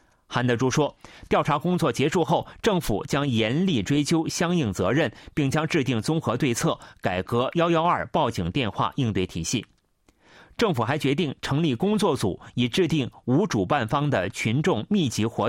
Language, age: Chinese, 30-49